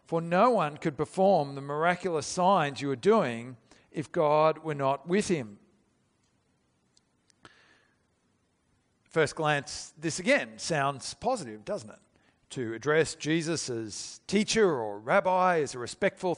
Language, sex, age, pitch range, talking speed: English, male, 50-69, 150-195 Hz, 130 wpm